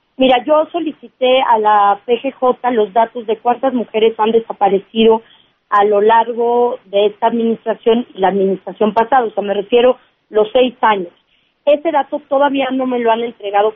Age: 40-59